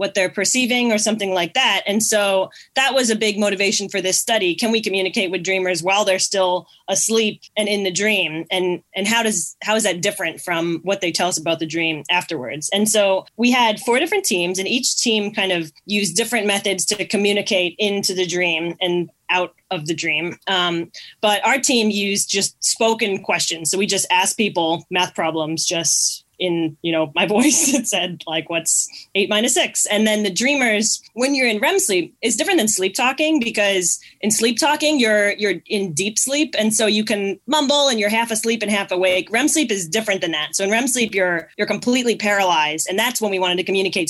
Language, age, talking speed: English, 20-39, 210 wpm